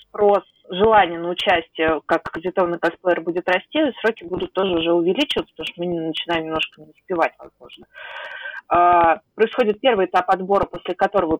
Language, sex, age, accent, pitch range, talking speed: Russian, female, 20-39, native, 170-205 Hz, 145 wpm